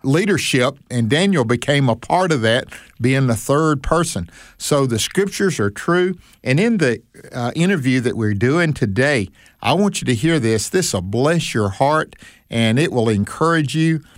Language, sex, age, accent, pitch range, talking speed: English, male, 50-69, American, 105-145 Hz, 180 wpm